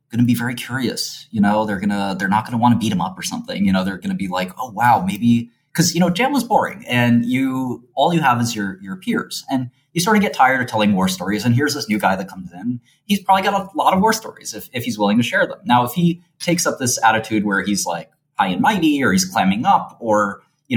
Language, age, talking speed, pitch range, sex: English, 20-39, 285 wpm, 100-165 Hz, male